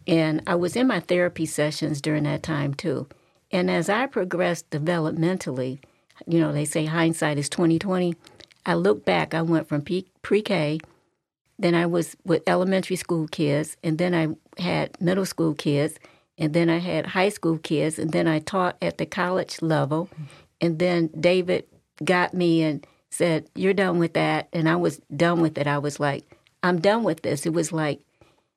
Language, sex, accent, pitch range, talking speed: English, female, American, 155-185 Hz, 185 wpm